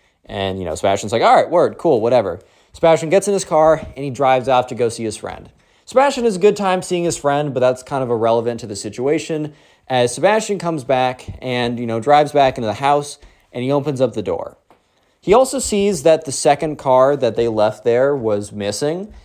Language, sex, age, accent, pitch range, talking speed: English, male, 20-39, American, 115-160 Hz, 220 wpm